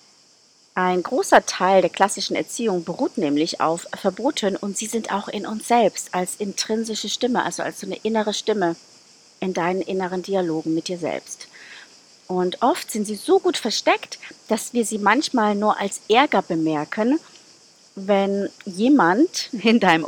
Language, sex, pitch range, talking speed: German, female, 180-220 Hz, 155 wpm